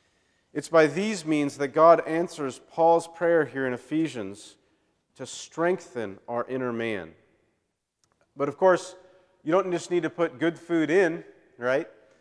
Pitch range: 125-165 Hz